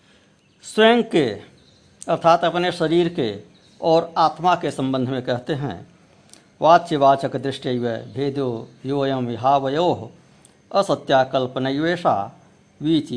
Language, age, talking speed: Hindi, 60-79, 90 wpm